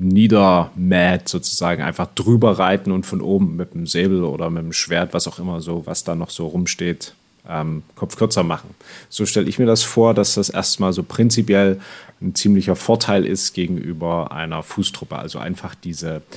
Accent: German